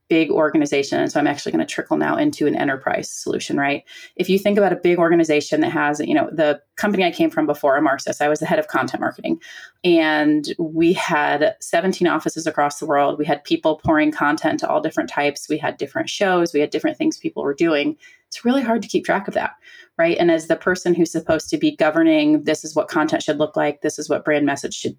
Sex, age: female, 30-49